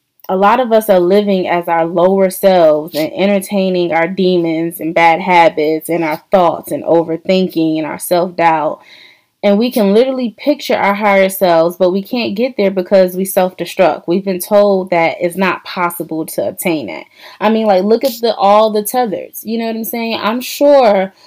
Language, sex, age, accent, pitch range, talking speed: English, female, 20-39, American, 175-220 Hz, 190 wpm